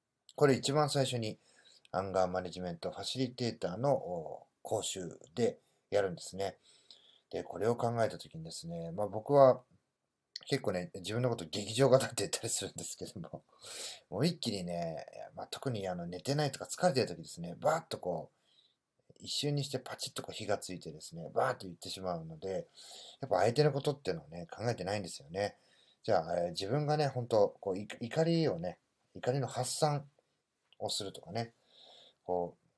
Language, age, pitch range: Japanese, 40-59, 95-140 Hz